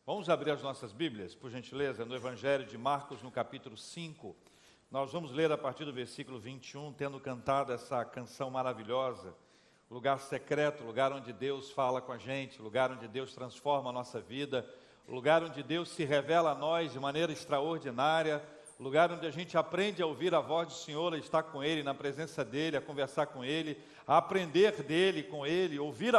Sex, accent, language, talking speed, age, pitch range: male, Brazilian, Portuguese, 185 wpm, 50-69, 135-180 Hz